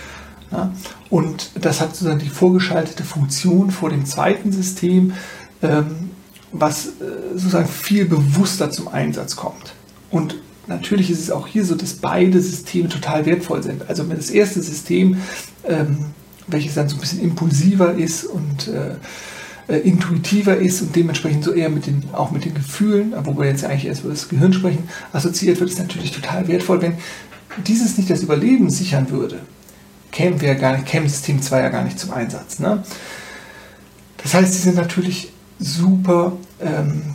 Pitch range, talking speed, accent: 150-185 Hz, 155 wpm, German